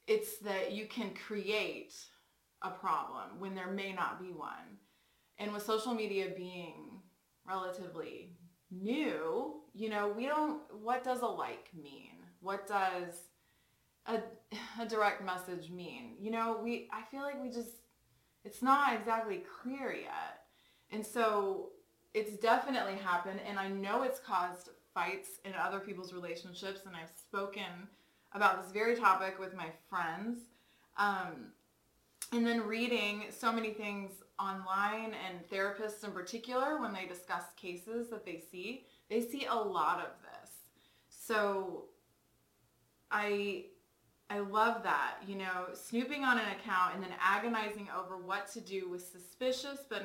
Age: 20-39